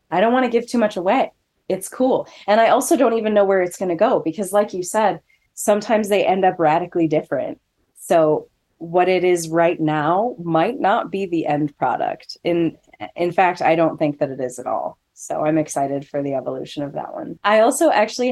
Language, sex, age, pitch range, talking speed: English, female, 20-39, 160-210 Hz, 215 wpm